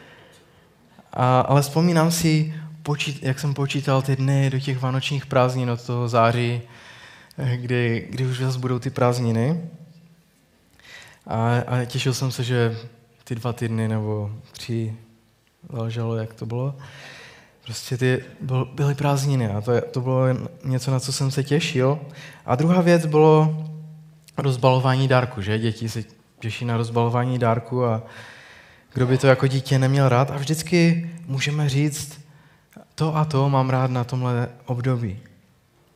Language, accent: Czech, native